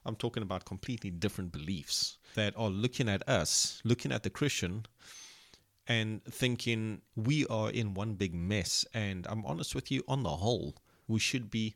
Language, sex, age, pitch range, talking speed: English, male, 30-49, 100-125 Hz, 175 wpm